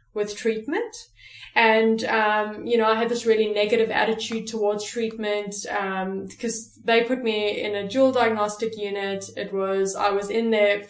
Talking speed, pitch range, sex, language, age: 165 wpm, 195-230 Hz, female, English, 20-39